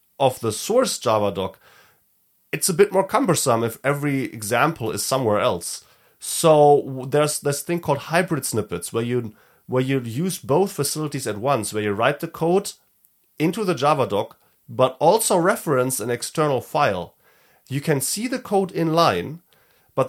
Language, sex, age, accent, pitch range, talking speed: English, male, 30-49, German, 120-155 Hz, 165 wpm